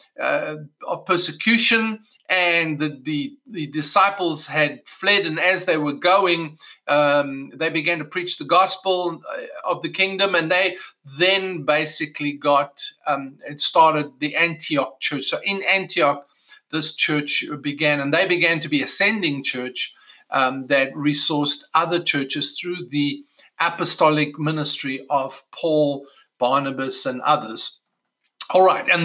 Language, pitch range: English, 145-190 Hz